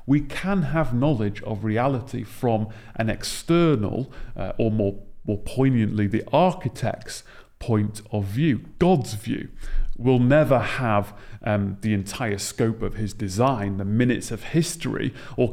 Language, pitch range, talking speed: English, 110-135 Hz, 140 wpm